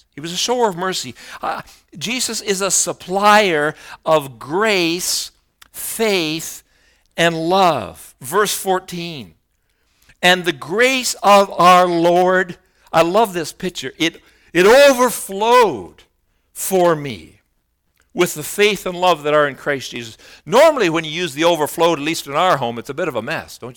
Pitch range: 120-195 Hz